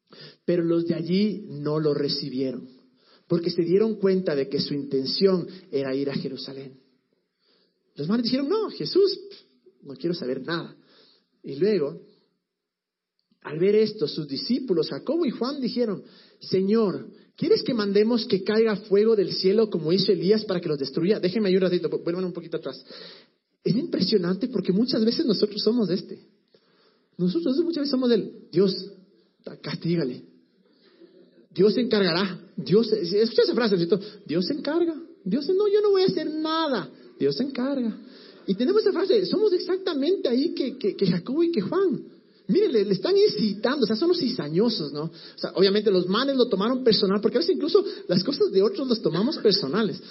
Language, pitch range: Spanish, 180-240 Hz